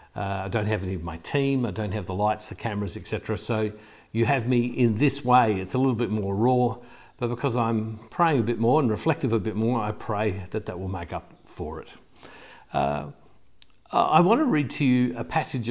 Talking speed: 225 wpm